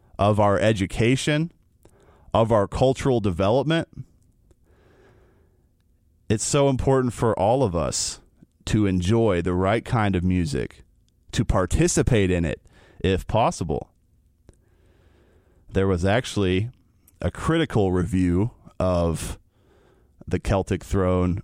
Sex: male